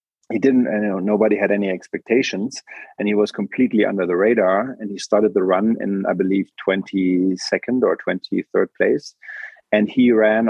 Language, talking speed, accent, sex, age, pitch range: English, 170 wpm, German, male, 30-49, 95-110 Hz